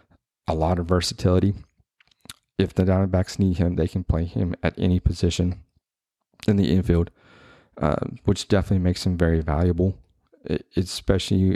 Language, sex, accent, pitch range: English, male, American, 85-95 Hz